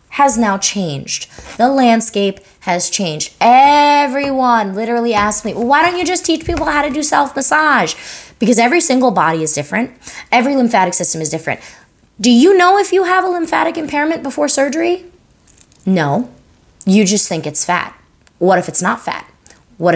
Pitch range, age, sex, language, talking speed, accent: 175-270 Hz, 20-39, female, English, 170 wpm, American